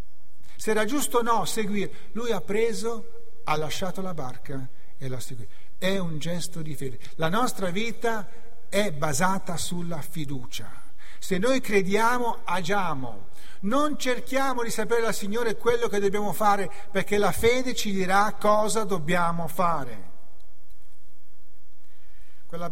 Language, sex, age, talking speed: Italian, male, 50-69, 135 wpm